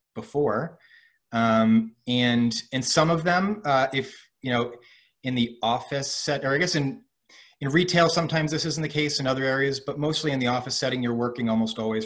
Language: English